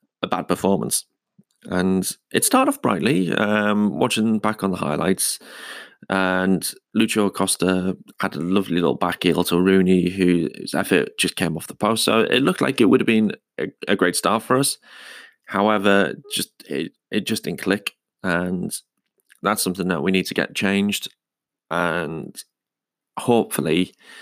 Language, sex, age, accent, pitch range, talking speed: English, male, 30-49, British, 90-105 Hz, 160 wpm